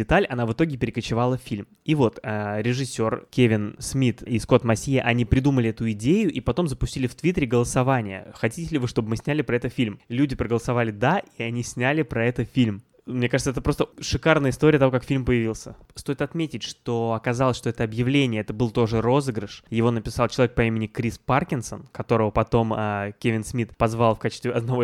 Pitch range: 115-140 Hz